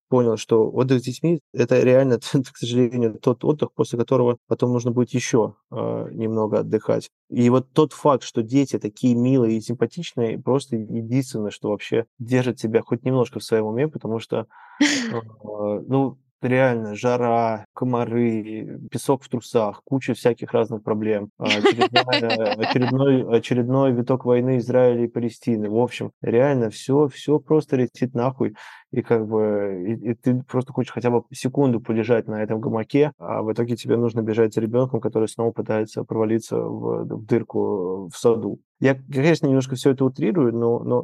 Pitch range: 115-130 Hz